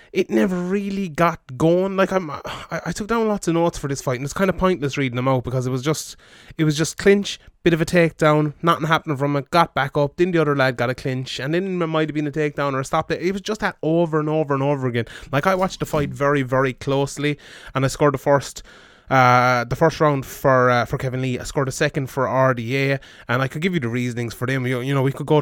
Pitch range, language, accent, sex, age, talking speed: 130-170 Hz, English, Irish, male, 20-39, 270 wpm